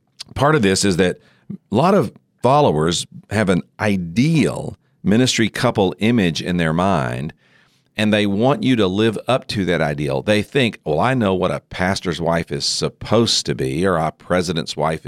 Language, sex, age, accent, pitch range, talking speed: English, male, 50-69, American, 90-125 Hz, 180 wpm